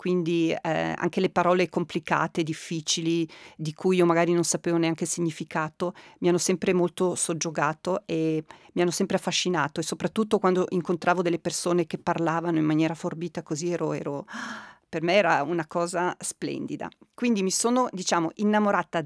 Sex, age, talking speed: female, 40-59, 160 wpm